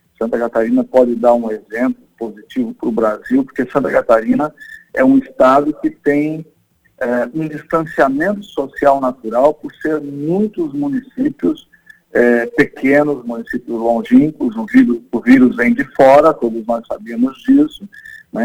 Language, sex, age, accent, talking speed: Portuguese, male, 50-69, Brazilian, 140 wpm